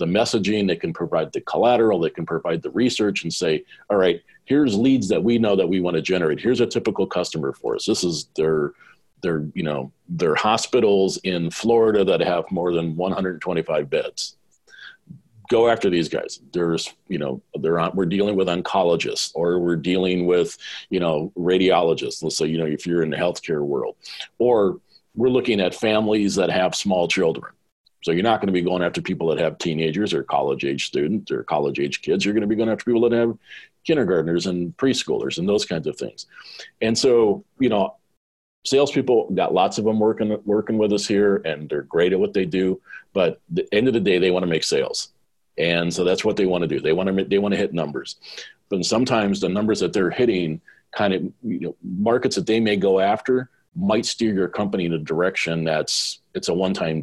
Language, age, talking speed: English, 40-59, 210 wpm